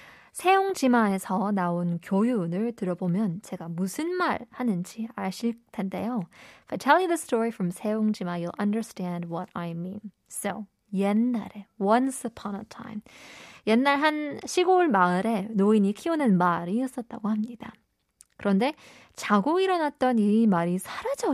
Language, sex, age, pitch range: Korean, female, 20-39, 195-245 Hz